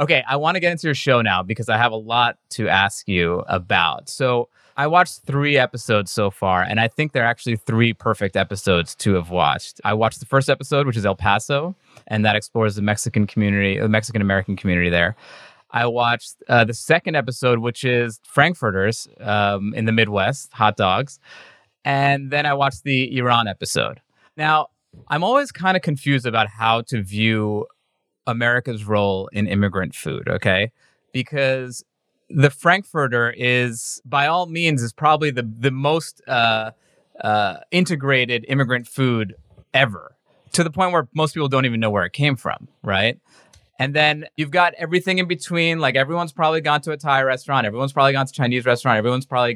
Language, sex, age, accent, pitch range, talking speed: English, male, 20-39, American, 110-145 Hz, 180 wpm